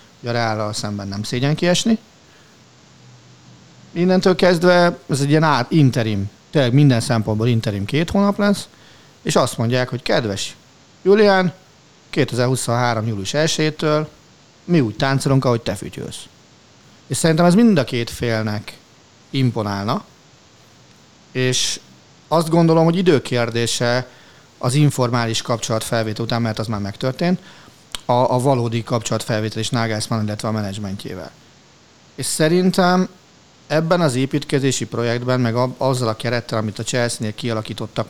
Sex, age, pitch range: male, 40-59, 110-145 Hz